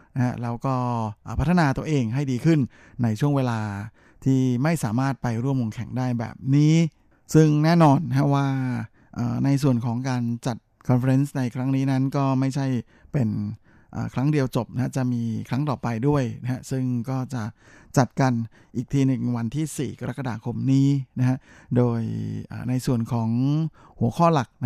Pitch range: 115-135 Hz